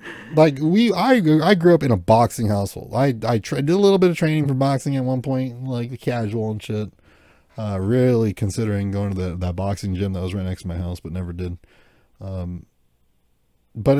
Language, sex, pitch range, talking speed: English, male, 100-130 Hz, 215 wpm